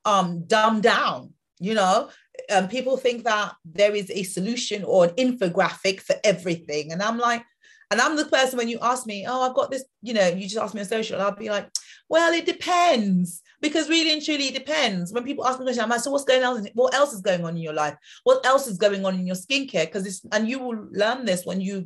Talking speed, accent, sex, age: 245 wpm, British, female, 30-49